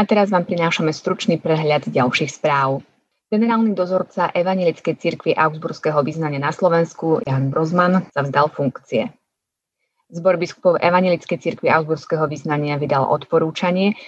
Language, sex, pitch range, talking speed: Slovak, female, 150-180 Hz, 125 wpm